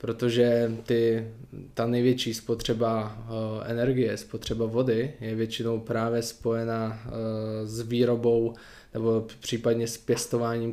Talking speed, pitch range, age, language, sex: 95 wpm, 115-120 Hz, 20-39, Czech, male